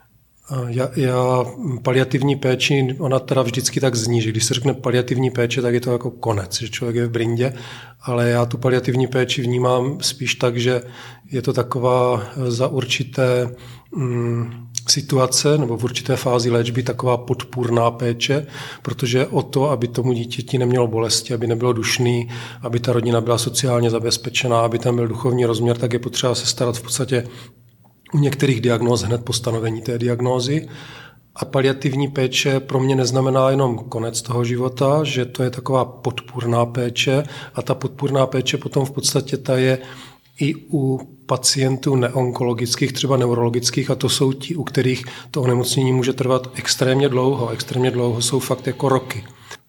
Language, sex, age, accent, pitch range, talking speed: Czech, male, 40-59, native, 120-135 Hz, 165 wpm